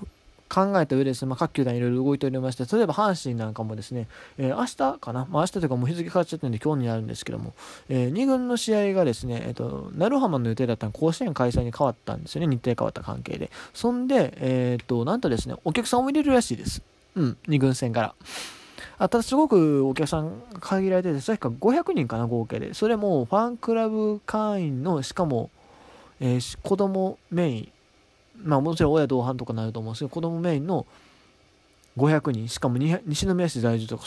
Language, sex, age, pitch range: Japanese, male, 20-39, 120-175 Hz